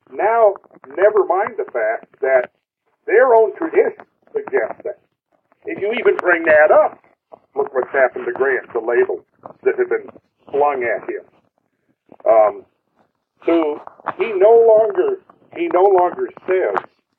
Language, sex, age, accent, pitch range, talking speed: English, male, 50-69, American, 335-425 Hz, 135 wpm